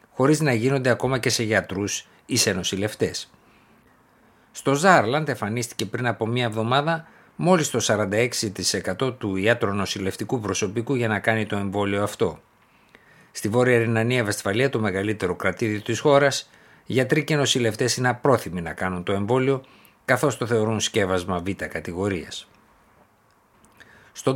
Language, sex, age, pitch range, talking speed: Greek, male, 60-79, 100-130 Hz, 135 wpm